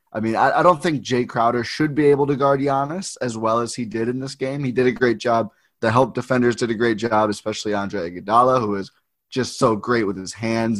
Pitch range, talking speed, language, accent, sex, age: 110-125 Hz, 250 wpm, English, American, male, 20-39